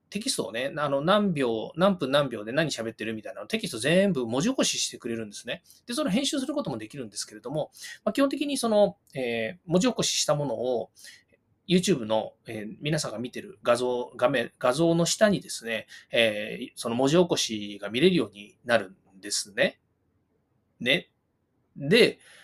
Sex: male